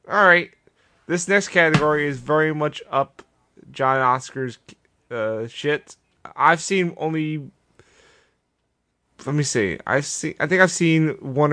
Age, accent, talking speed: 20-39, American, 135 wpm